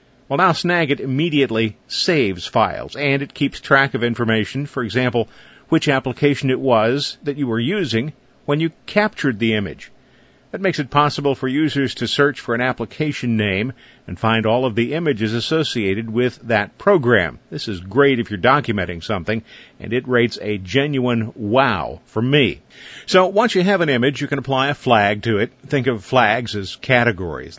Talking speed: 180 wpm